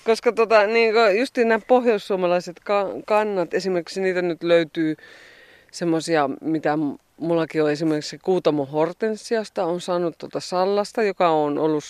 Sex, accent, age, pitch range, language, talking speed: female, native, 30-49, 155-195 Hz, Finnish, 125 wpm